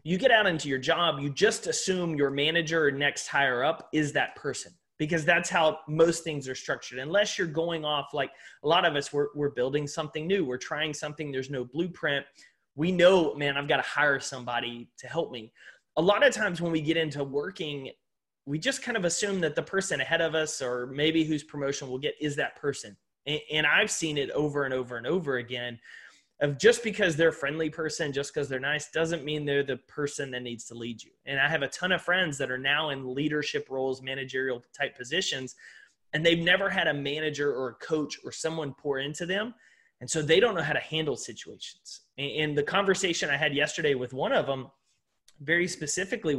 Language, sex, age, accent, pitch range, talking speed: English, male, 30-49, American, 140-170 Hz, 215 wpm